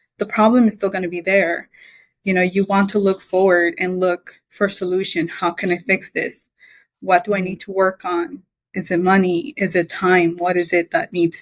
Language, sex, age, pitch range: English, female, 20-39, 175-200 Hz